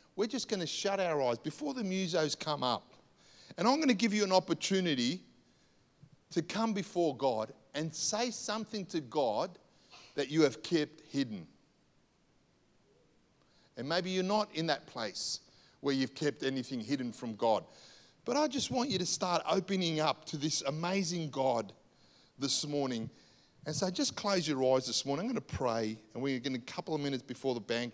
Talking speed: 185 wpm